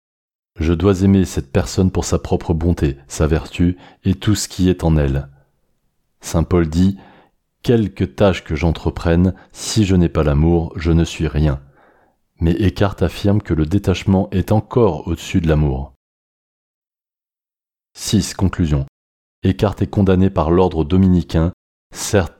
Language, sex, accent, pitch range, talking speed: French, male, French, 80-95 Hz, 145 wpm